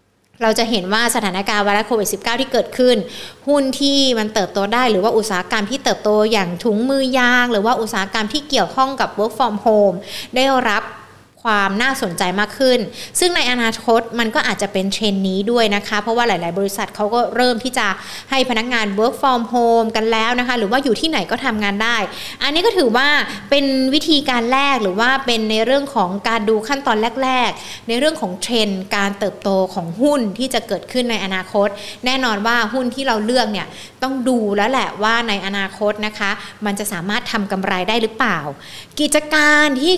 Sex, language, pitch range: female, Thai, 205-260 Hz